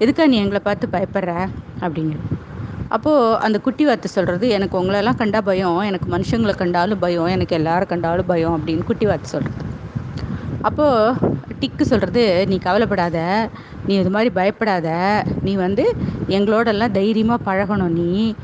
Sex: female